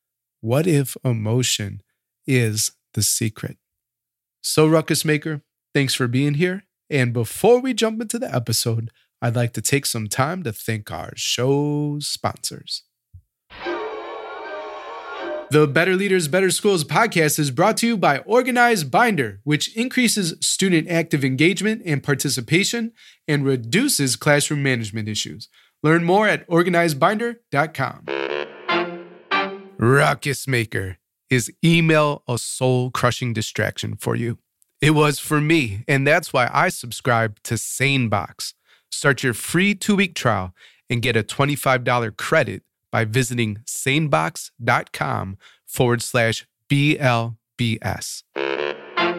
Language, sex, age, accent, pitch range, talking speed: English, male, 30-49, American, 120-165 Hz, 120 wpm